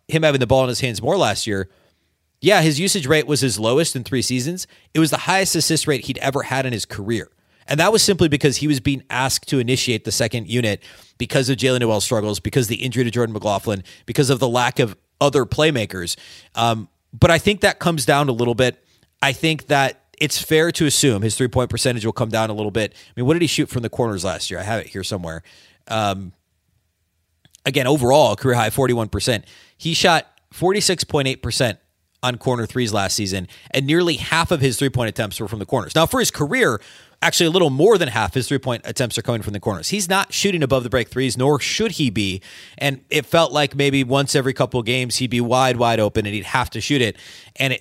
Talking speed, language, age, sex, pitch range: 230 wpm, English, 30-49, male, 110-150 Hz